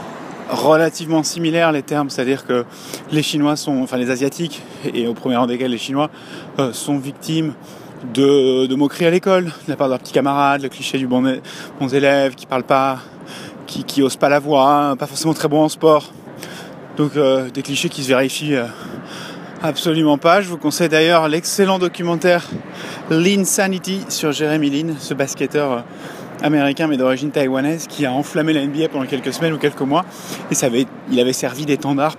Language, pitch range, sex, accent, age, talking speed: French, 140-175 Hz, male, French, 20-39, 185 wpm